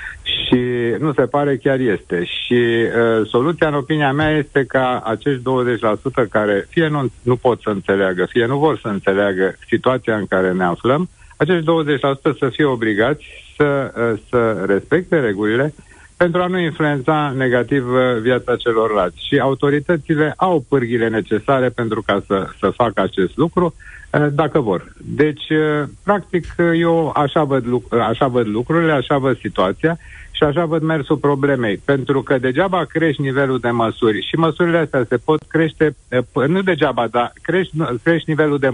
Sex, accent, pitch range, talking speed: male, native, 120-155 Hz, 145 wpm